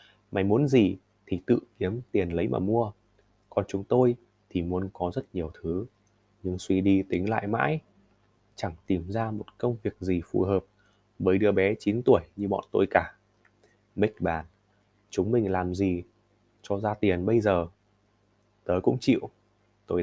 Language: Vietnamese